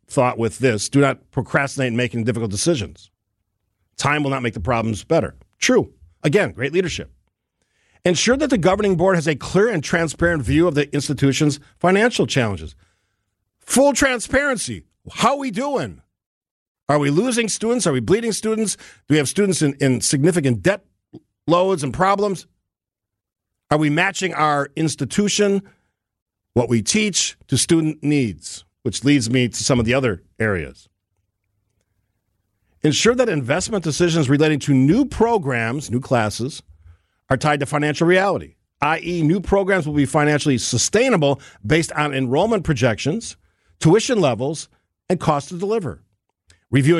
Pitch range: 120-175 Hz